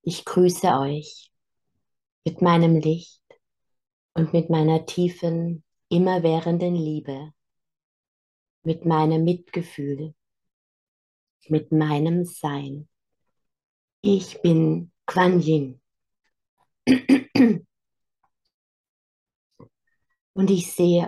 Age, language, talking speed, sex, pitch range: 20-39, German, 70 wpm, female, 155-175 Hz